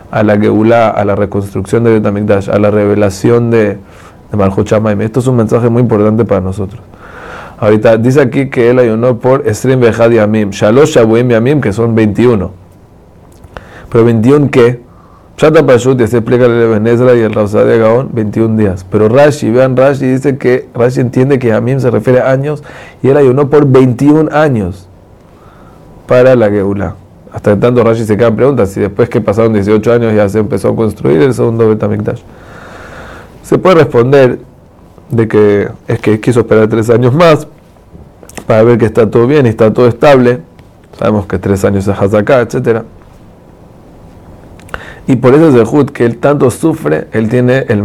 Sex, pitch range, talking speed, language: male, 105-125 Hz, 175 wpm, Spanish